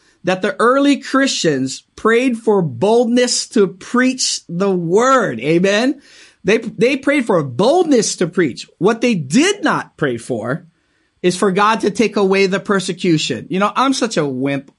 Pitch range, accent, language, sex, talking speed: 175-240 Hz, American, English, male, 160 wpm